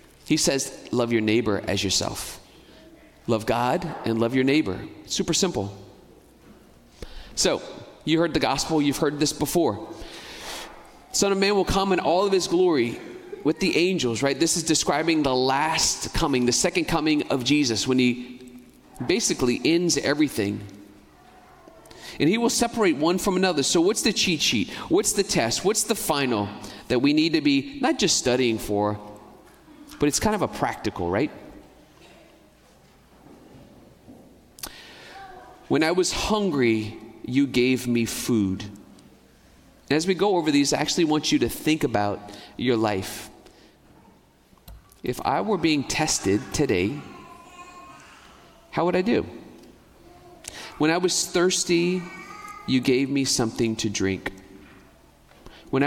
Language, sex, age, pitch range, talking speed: English, male, 30-49, 115-190 Hz, 140 wpm